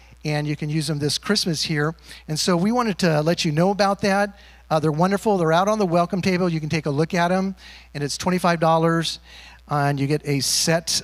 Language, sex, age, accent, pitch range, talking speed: English, male, 50-69, American, 145-185 Hz, 230 wpm